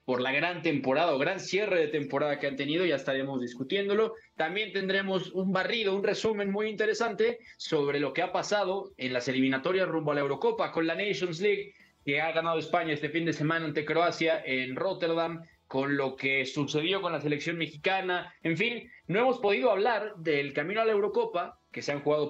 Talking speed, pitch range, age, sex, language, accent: 200 wpm, 135-195 Hz, 20-39, male, Spanish, Mexican